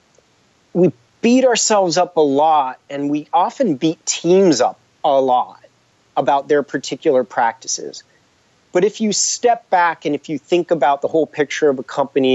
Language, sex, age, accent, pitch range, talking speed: English, male, 30-49, American, 130-195 Hz, 165 wpm